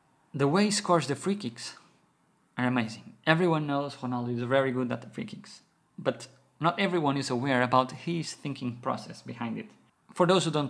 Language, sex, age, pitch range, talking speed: English, male, 20-39, 130-180 Hz, 190 wpm